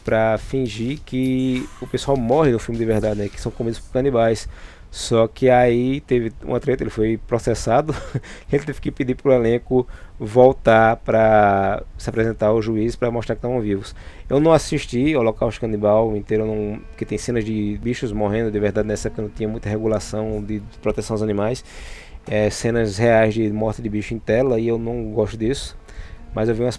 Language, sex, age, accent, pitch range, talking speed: Portuguese, male, 20-39, Brazilian, 105-125 Hz, 190 wpm